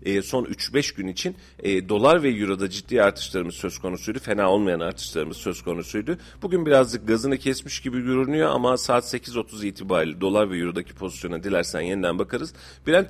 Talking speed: 160 wpm